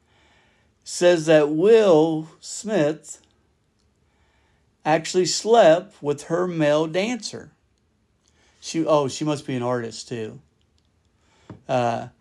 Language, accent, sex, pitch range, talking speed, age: English, American, male, 110-155 Hz, 95 wpm, 60-79